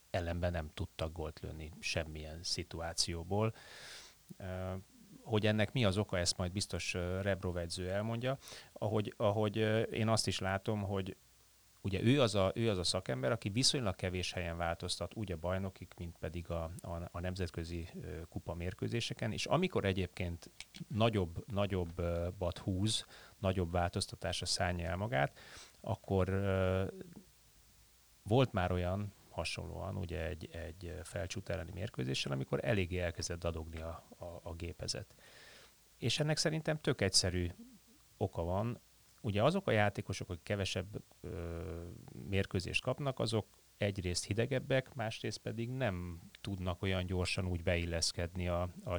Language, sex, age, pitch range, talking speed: Hungarian, male, 30-49, 90-110 Hz, 140 wpm